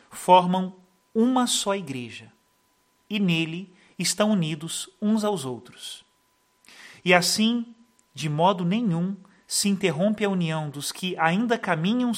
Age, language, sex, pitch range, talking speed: 40-59, Portuguese, male, 165-200 Hz, 120 wpm